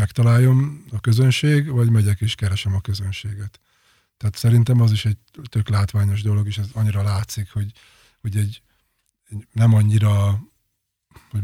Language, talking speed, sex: Hungarian, 145 wpm, male